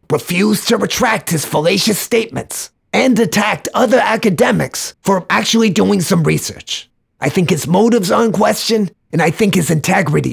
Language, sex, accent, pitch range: English, male, American, 150-225 Hz